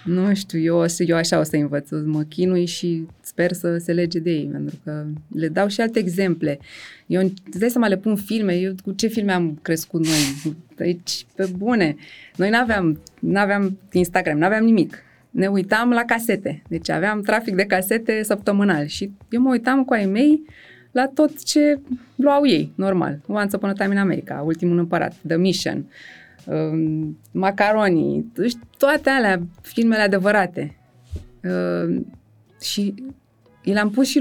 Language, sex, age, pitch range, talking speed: Romanian, female, 20-39, 165-225 Hz, 155 wpm